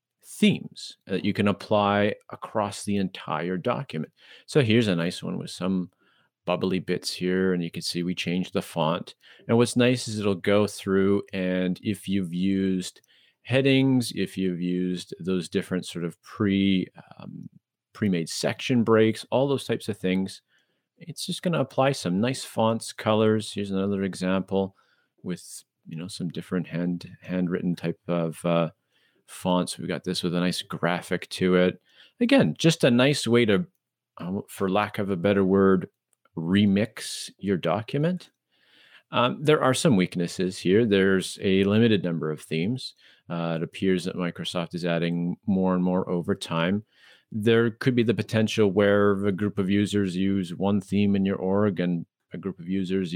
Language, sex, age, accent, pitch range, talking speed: English, male, 40-59, American, 90-110 Hz, 165 wpm